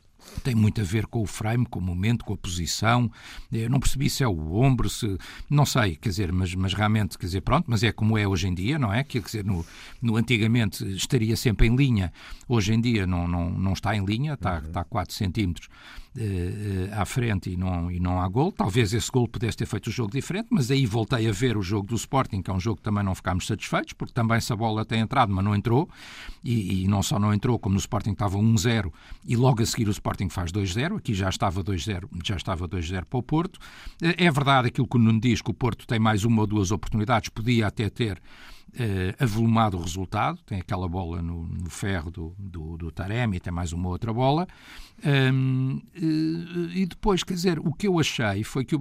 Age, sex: 50-69, male